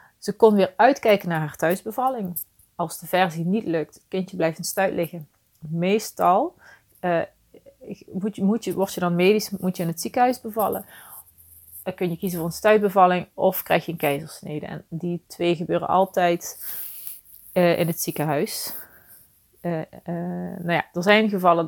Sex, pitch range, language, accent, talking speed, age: female, 170-205 Hz, Dutch, Dutch, 175 wpm, 30-49